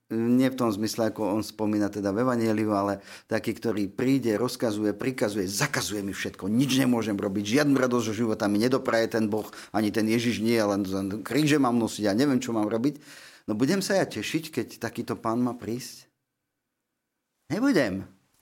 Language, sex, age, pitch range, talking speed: Slovak, male, 40-59, 105-130 Hz, 175 wpm